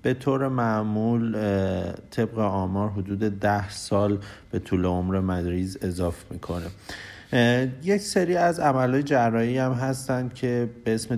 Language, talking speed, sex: Persian, 130 wpm, male